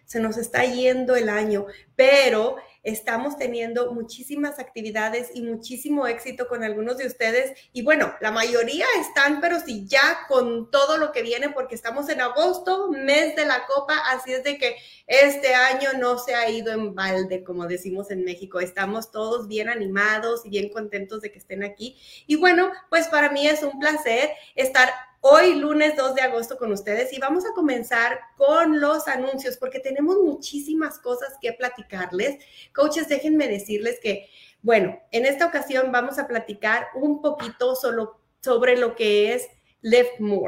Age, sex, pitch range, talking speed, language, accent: 30-49, female, 225-290 Hz, 170 wpm, Spanish, Mexican